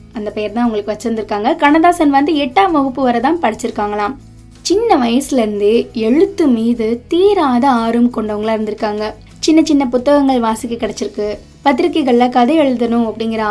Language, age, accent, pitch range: Tamil, 20-39, native, 220-285 Hz